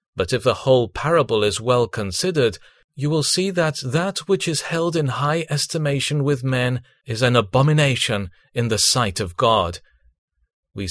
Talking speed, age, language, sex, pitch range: 165 wpm, 40-59, English, male, 120-150 Hz